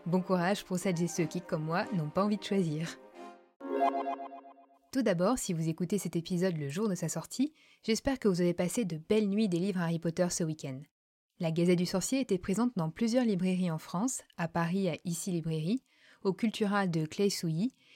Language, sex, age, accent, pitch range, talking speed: French, female, 20-39, French, 170-215 Hz, 205 wpm